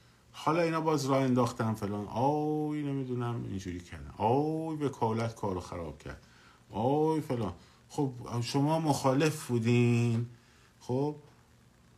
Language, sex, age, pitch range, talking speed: Persian, male, 50-69, 105-145 Hz, 115 wpm